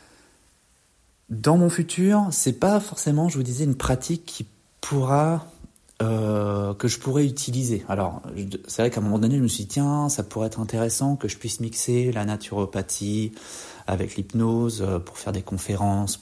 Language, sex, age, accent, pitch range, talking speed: French, male, 30-49, French, 100-125 Hz, 175 wpm